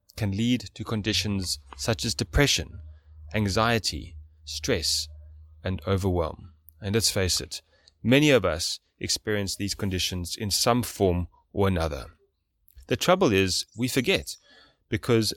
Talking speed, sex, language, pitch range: 125 wpm, male, English, 85-110 Hz